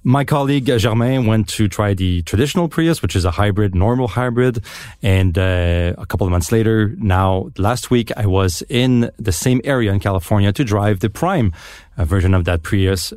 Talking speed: 190 wpm